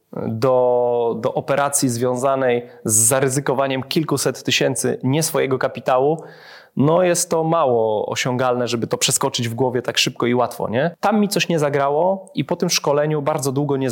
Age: 20-39